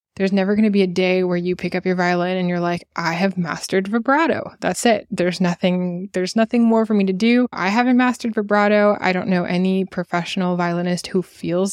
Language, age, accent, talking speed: English, 20-39, American, 215 wpm